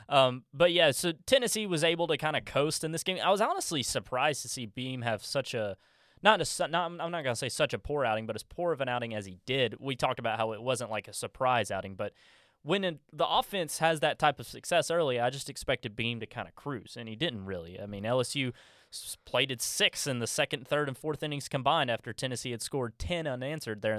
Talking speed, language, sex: 245 wpm, English, male